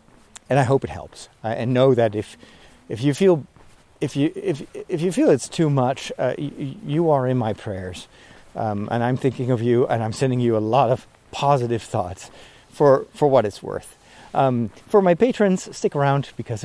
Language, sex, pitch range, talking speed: English, male, 115-175 Hz, 200 wpm